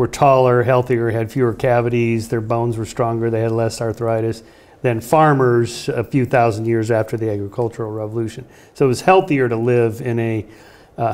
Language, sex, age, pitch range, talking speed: English, male, 40-59, 115-130 Hz, 180 wpm